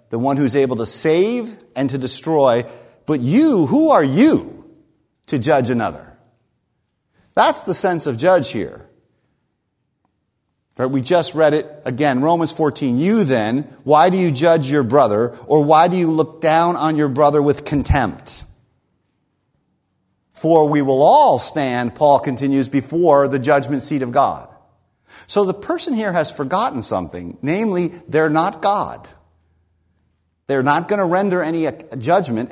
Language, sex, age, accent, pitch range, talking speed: English, male, 50-69, American, 140-190 Hz, 150 wpm